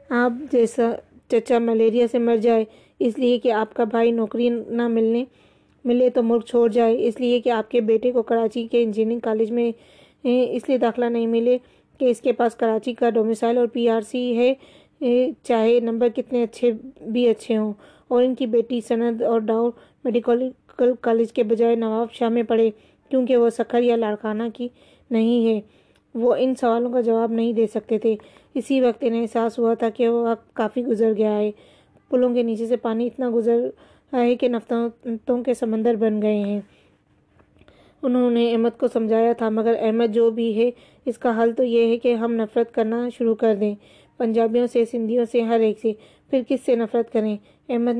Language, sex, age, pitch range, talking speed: Urdu, female, 20-39, 230-245 Hz, 195 wpm